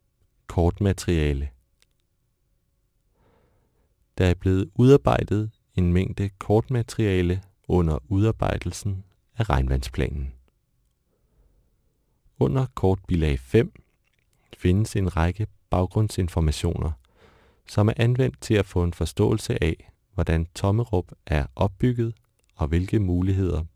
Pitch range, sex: 85-110 Hz, male